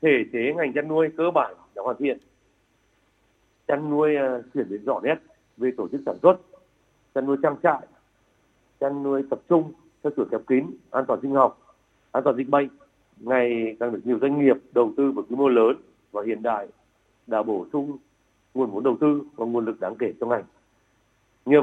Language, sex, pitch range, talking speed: Vietnamese, male, 120-140 Hz, 200 wpm